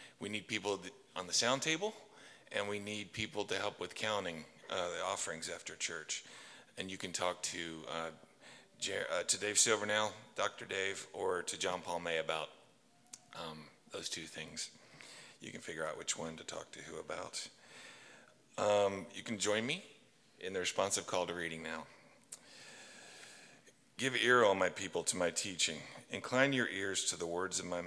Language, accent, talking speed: English, American, 170 wpm